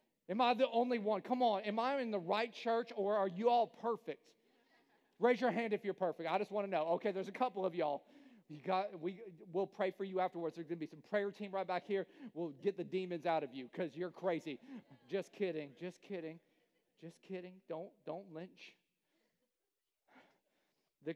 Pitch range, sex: 190-265 Hz, male